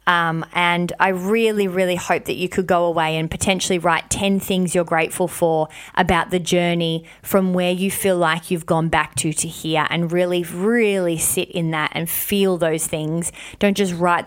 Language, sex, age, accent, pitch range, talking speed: English, female, 20-39, Australian, 170-200 Hz, 195 wpm